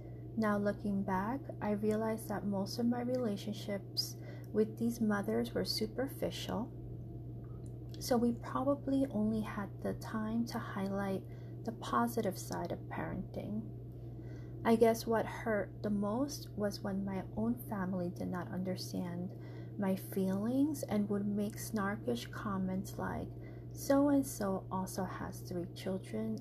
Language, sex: English, female